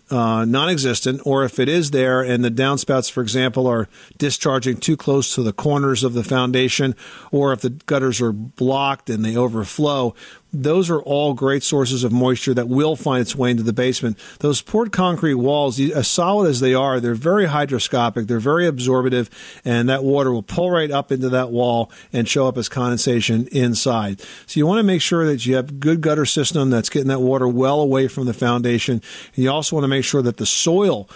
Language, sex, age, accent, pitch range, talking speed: English, male, 50-69, American, 120-145 Hz, 205 wpm